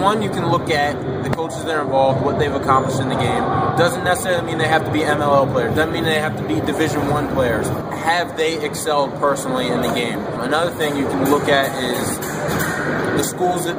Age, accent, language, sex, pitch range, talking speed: 20-39, American, English, male, 130-155 Hz, 220 wpm